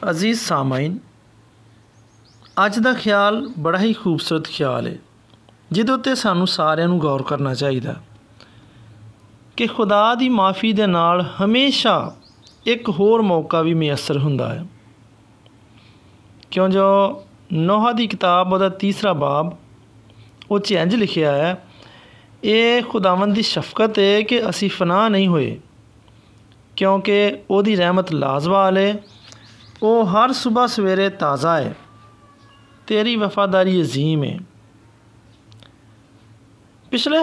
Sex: male